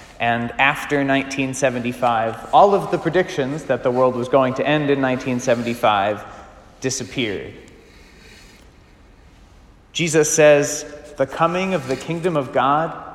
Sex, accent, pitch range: male, American, 130-175 Hz